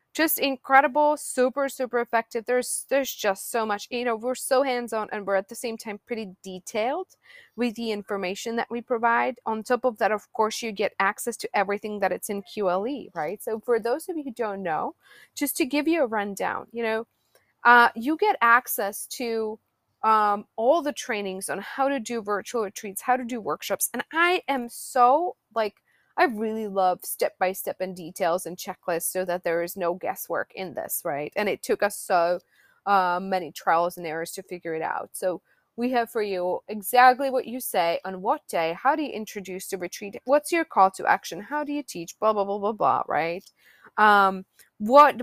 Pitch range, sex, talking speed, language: 195-255 Hz, female, 200 wpm, English